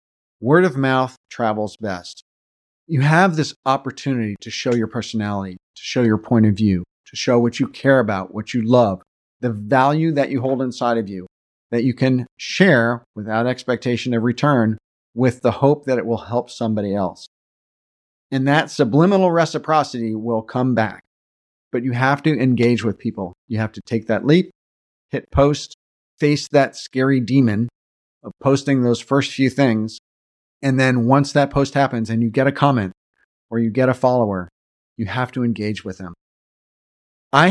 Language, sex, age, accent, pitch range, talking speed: English, male, 40-59, American, 110-140 Hz, 175 wpm